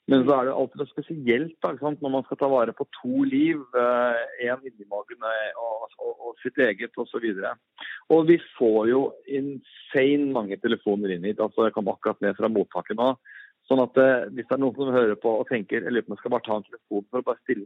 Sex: male